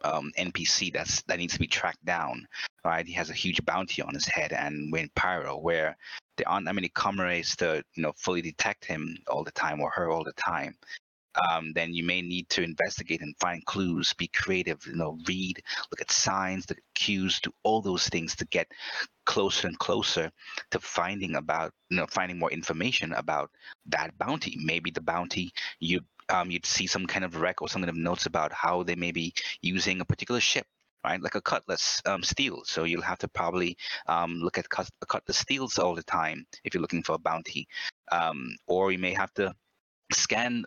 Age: 30-49